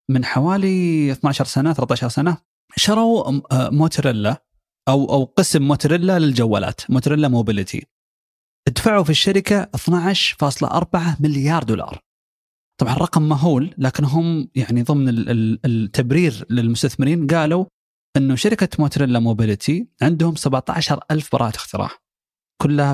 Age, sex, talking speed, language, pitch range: 30-49, male, 100 wpm, Arabic, 125-155 Hz